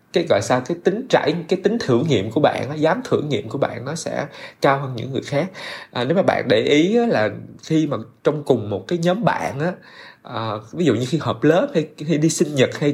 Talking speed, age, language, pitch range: 245 wpm, 20-39, Vietnamese, 115-160 Hz